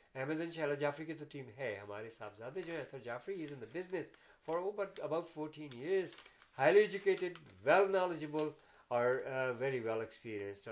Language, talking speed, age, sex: Urdu, 180 wpm, 50-69, male